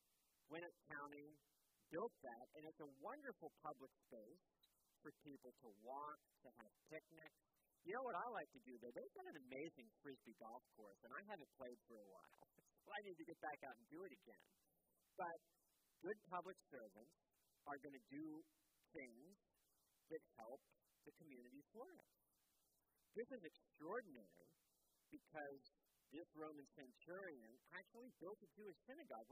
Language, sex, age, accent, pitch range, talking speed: English, male, 50-69, American, 125-175 Hz, 160 wpm